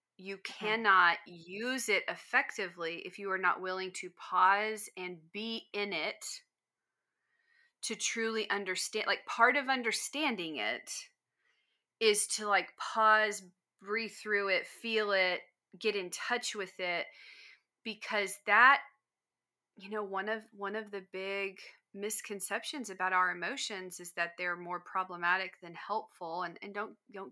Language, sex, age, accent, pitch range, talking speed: English, female, 30-49, American, 185-230 Hz, 140 wpm